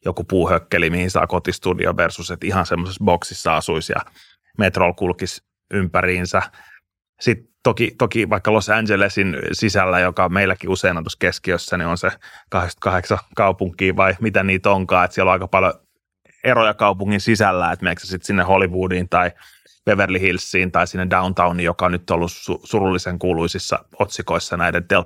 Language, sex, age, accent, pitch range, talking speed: Finnish, male, 30-49, native, 90-100 Hz, 160 wpm